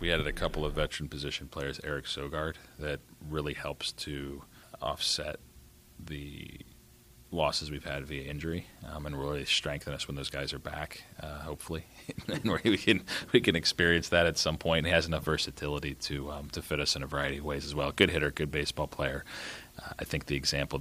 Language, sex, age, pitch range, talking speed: English, male, 30-49, 70-75 Hz, 200 wpm